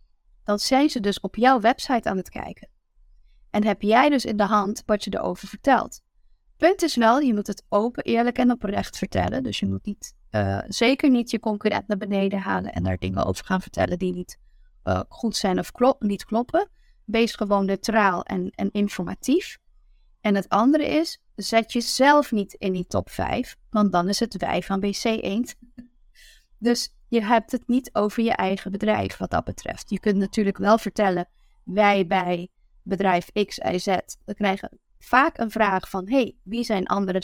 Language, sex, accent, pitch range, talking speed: Dutch, female, Dutch, 195-240 Hz, 190 wpm